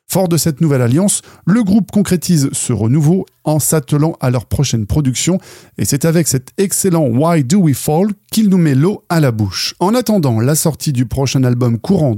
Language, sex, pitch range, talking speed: French, male, 125-195 Hz, 205 wpm